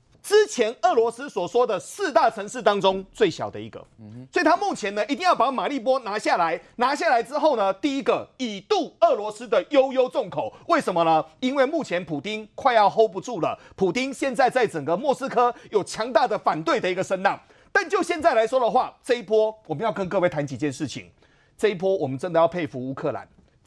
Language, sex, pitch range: Chinese, male, 180-285 Hz